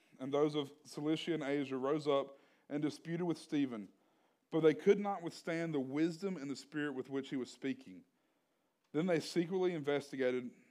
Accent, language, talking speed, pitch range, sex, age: American, English, 175 wpm, 120-150 Hz, male, 40-59